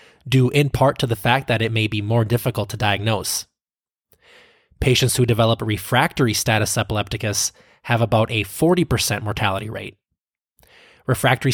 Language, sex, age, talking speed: English, male, 20-39, 140 wpm